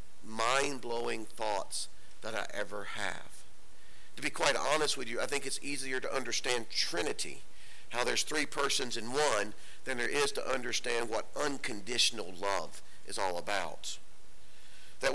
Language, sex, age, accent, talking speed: English, male, 50-69, American, 145 wpm